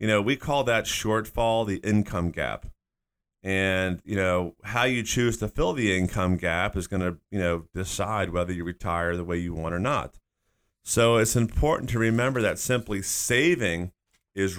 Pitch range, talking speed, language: 90-115 Hz, 180 wpm, English